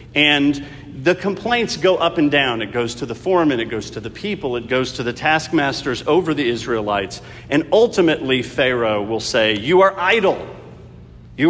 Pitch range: 115-160 Hz